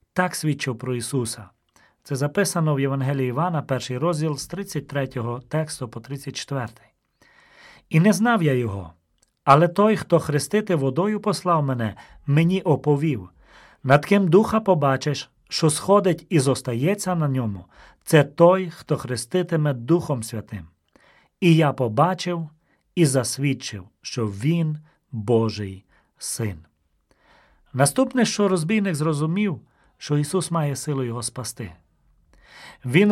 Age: 40-59